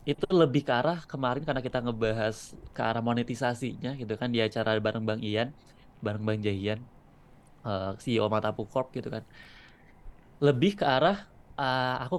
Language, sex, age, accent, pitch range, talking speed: Indonesian, male, 20-39, native, 115-140 Hz, 150 wpm